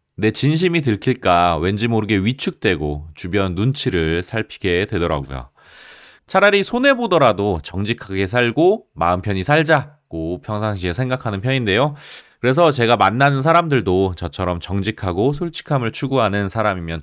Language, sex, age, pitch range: Korean, male, 30-49, 95-145 Hz